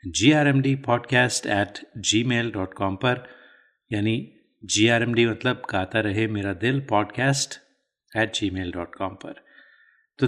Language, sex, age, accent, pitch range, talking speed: Hindi, male, 30-49, native, 105-130 Hz, 110 wpm